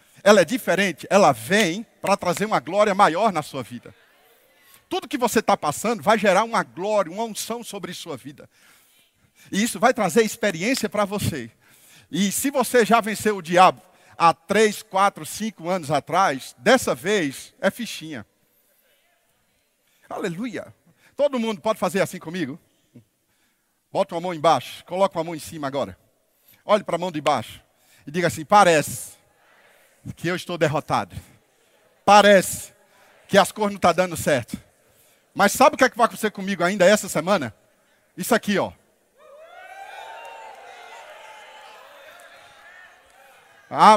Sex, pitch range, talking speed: male, 180-235 Hz, 145 wpm